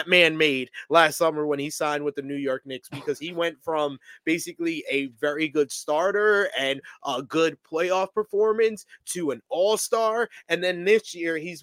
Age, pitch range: 20-39, 135-170 Hz